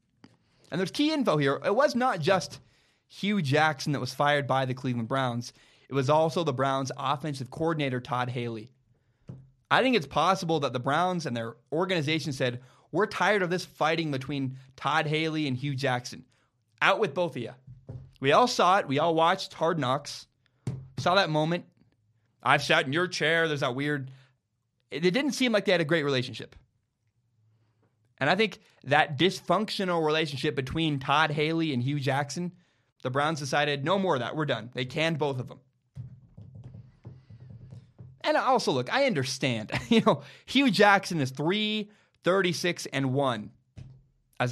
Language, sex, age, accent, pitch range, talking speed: English, male, 20-39, American, 125-165 Hz, 165 wpm